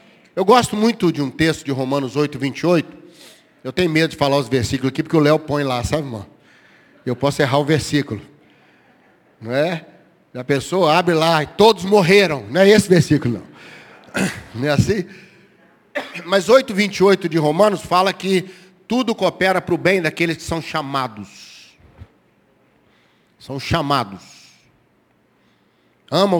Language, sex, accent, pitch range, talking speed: Portuguese, male, Brazilian, 145-195 Hz, 150 wpm